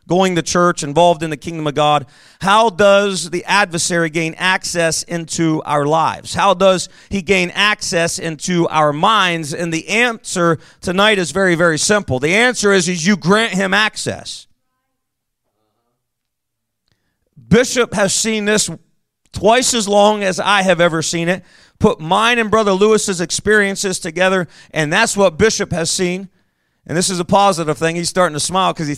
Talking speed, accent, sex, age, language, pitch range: 165 wpm, American, male, 40-59, English, 165-215 Hz